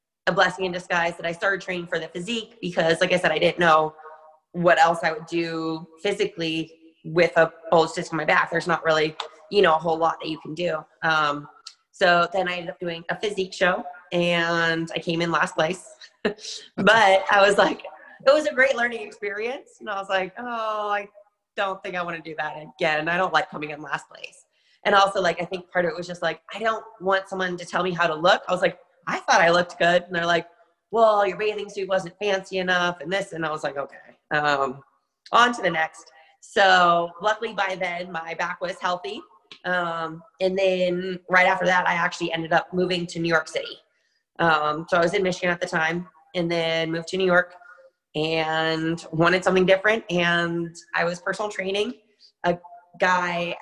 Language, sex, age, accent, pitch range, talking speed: English, female, 20-39, American, 165-190 Hz, 215 wpm